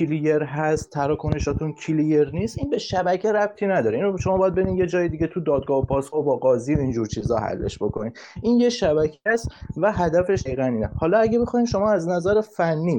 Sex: male